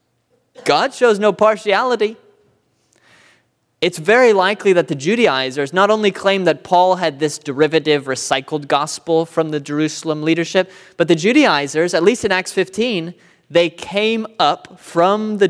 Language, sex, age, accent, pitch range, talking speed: English, male, 20-39, American, 150-200 Hz, 145 wpm